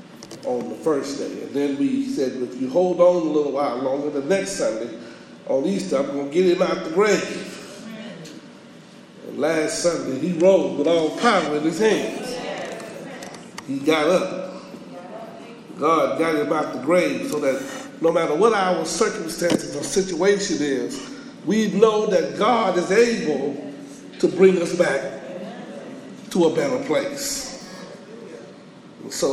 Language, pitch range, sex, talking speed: English, 160-220 Hz, male, 150 wpm